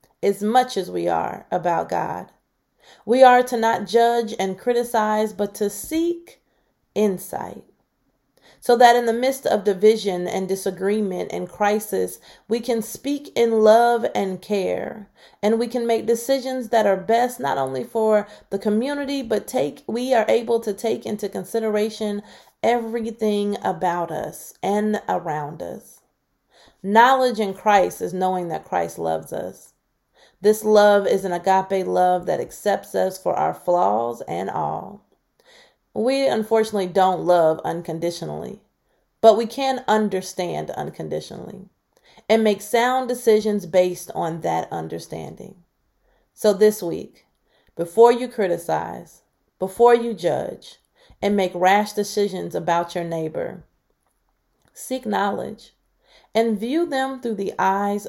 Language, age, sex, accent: English, 30-49, female, American